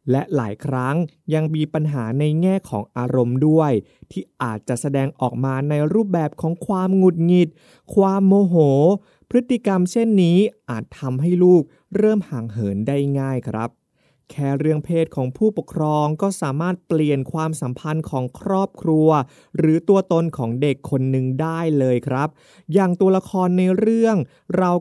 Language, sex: Thai, male